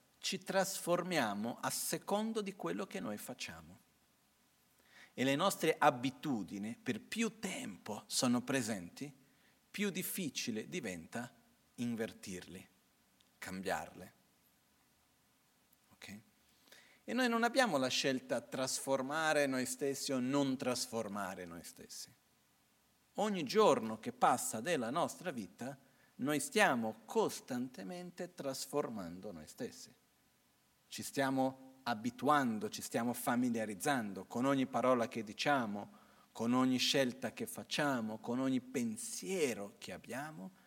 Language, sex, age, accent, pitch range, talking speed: Italian, male, 50-69, native, 125-195 Hz, 105 wpm